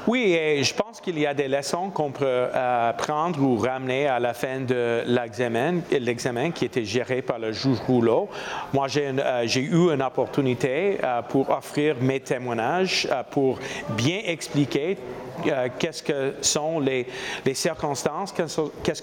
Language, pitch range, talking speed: French, 130-165 Hz, 165 wpm